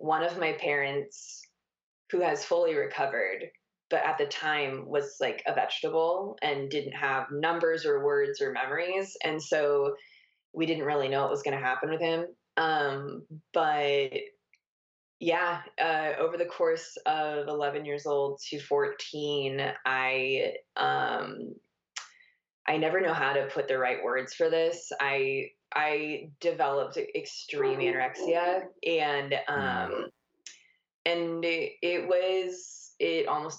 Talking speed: 135 wpm